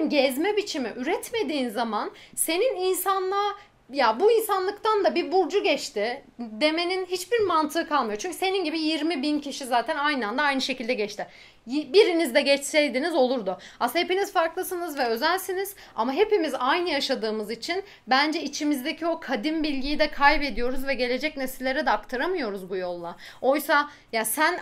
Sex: female